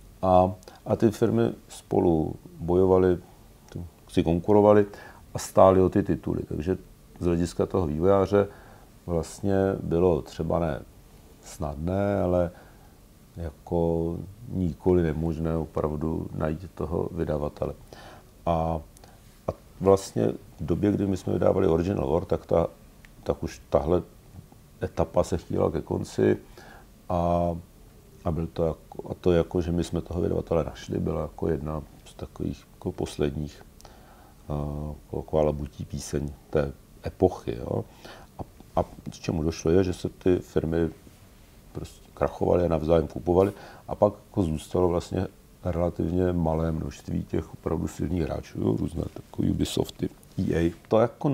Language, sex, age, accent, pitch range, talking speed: Czech, male, 50-69, native, 80-95 Hz, 130 wpm